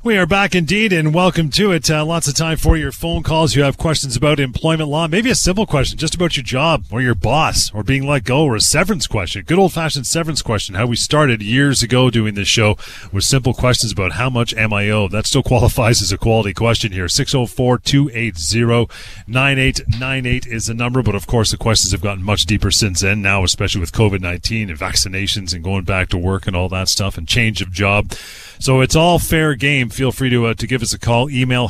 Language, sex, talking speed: English, male, 220 wpm